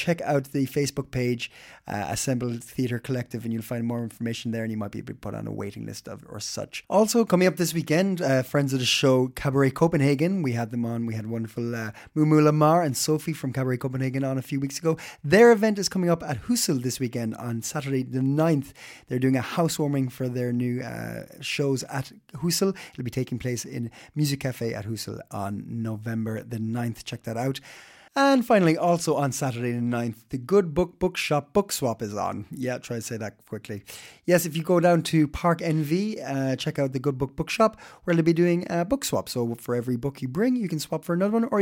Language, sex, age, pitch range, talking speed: Danish, male, 30-49, 120-170 Hz, 225 wpm